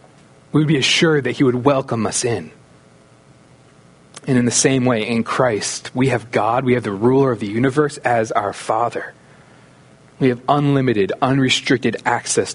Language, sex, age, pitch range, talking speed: English, male, 30-49, 120-150 Hz, 165 wpm